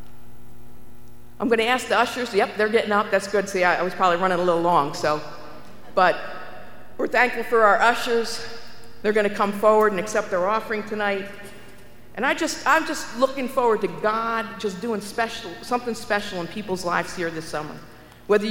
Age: 50-69